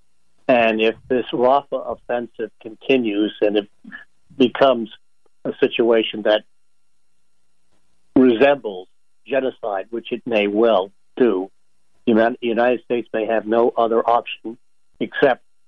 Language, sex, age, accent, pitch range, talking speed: English, male, 60-79, American, 110-120 Hz, 105 wpm